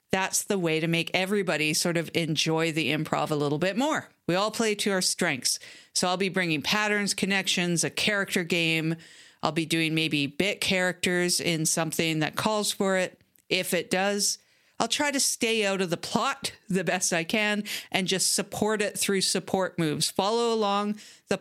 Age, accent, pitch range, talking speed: 40-59, American, 165-205 Hz, 190 wpm